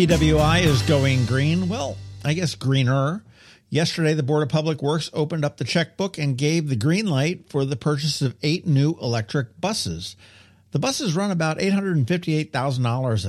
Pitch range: 115-165 Hz